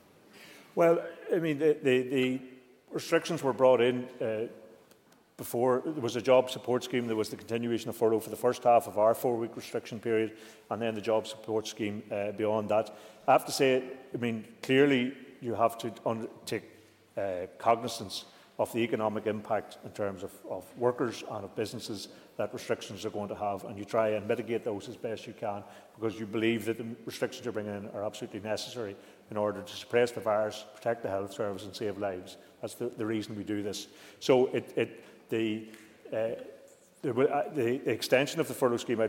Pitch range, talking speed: 105-120 Hz, 190 wpm